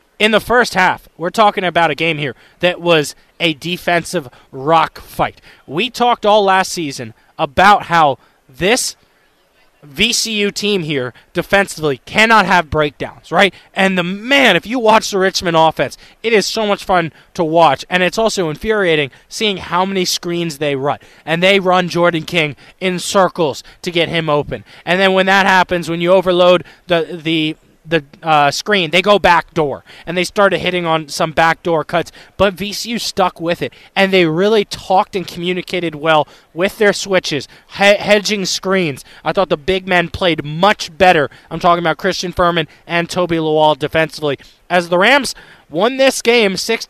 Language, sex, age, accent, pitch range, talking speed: English, male, 20-39, American, 160-195 Hz, 170 wpm